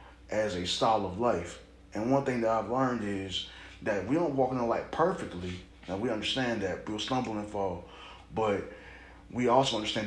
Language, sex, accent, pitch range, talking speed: English, male, American, 95-115 Hz, 190 wpm